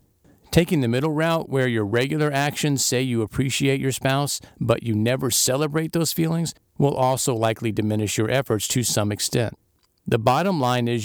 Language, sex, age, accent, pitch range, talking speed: English, male, 50-69, American, 110-140 Hz, 175 wpm